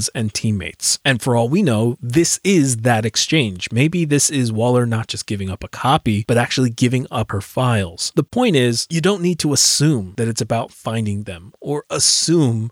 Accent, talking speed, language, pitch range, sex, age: American, 200 wpm, English, 115-155 Hz, male, 30-49